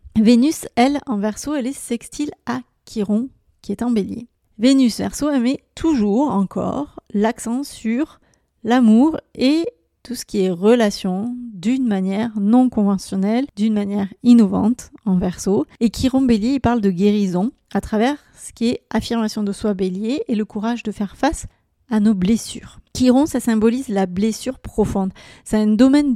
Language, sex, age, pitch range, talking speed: French, female, 30-49, 210-255 Hz, 165 wpm